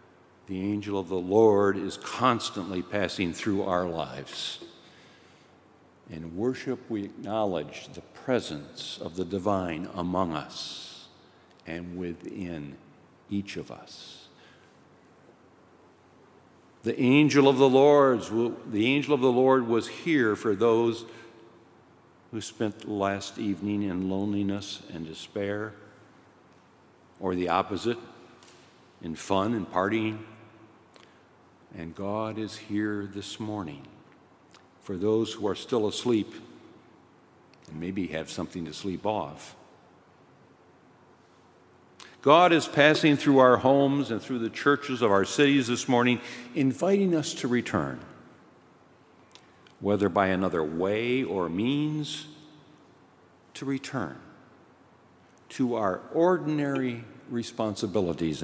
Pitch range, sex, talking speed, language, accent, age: 95-125 Hz, male, 110 wpm, English, American, 60-79